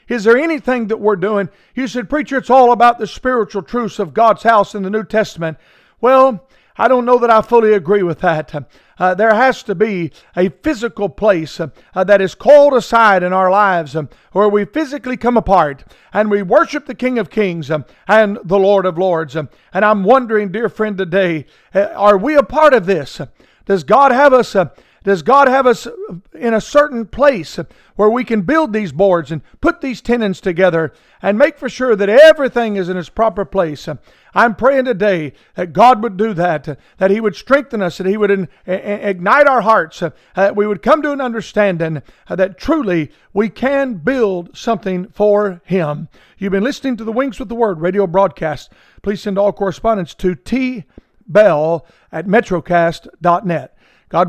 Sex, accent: male, American